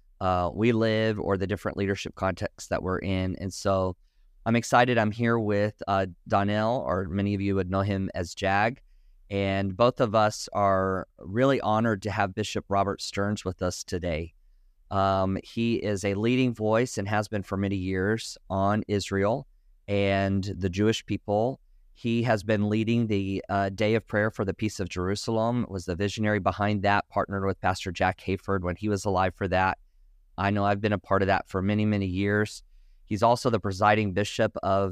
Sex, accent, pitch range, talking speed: male, American, 95-110 Hz, 190 wpm